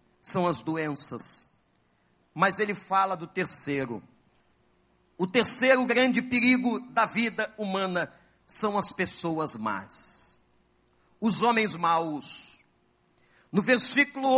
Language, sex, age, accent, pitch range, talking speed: Portuguese, male, 50-69, Brazilian, 175-255 Hz, 100 wpm